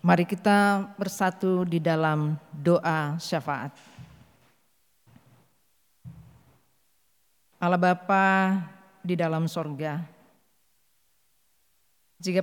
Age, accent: 40-59, native